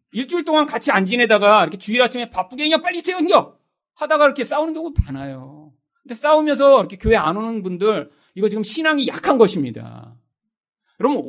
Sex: male